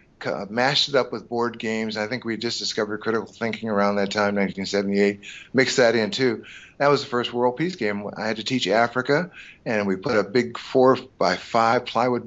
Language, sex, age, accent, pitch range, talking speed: English, male, 50-69, American, 105-125 Hz, 210 wpm